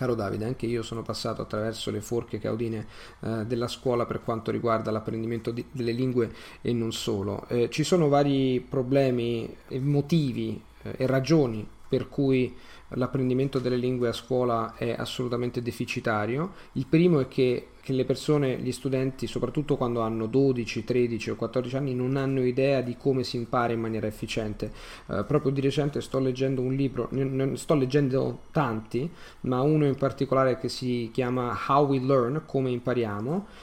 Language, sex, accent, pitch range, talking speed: Italian, male, native, 115-140 Hz, 165 wpm